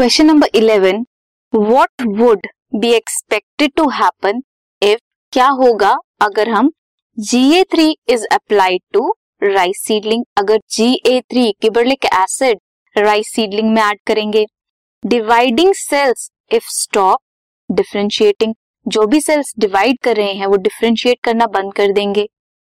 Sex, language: female, Hindi